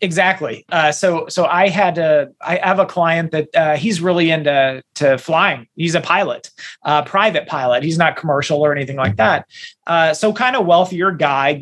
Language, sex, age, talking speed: English, male, 30-49, 190 wpm